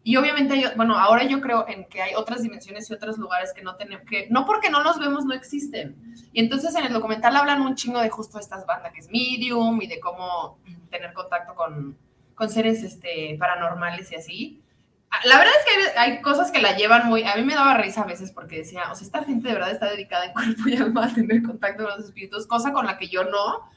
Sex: female